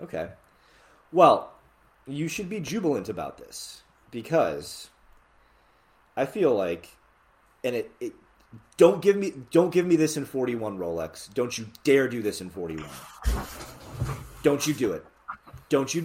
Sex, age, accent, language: male, 30-49, American, English